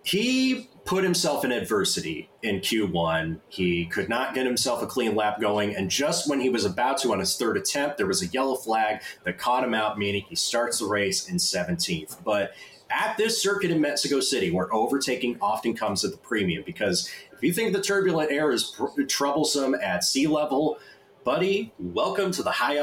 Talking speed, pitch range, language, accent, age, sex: 195 wpm, 125-185 Hz, English, American, 30-49, male